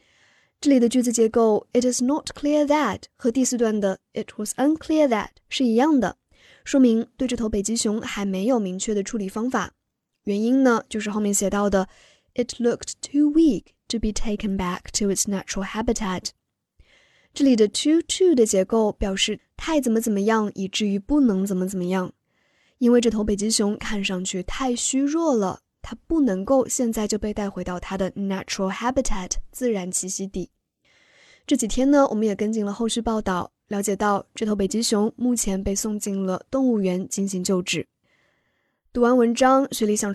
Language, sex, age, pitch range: Chinese, female, 10-29, 200-255 Hz